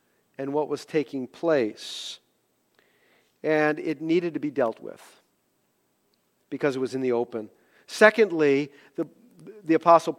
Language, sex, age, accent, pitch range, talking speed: English, male, 50-69, American, 150-195 Hz, 130 wpm